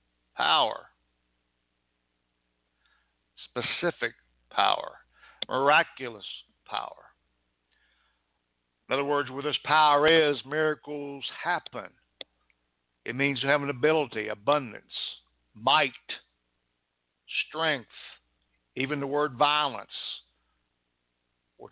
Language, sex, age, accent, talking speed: English, male, 60-79, American, 75 wpm